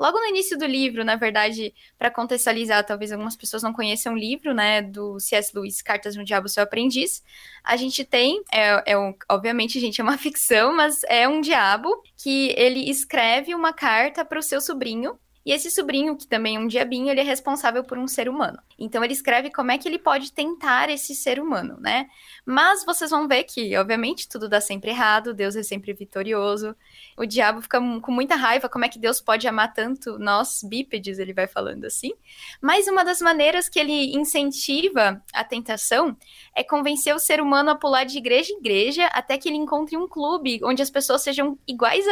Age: 10-29